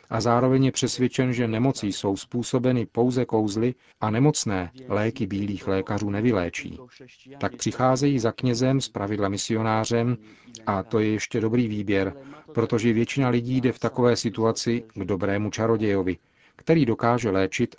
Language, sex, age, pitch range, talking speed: Czech, male, 40-59, 105-120 Hz, 140 wpm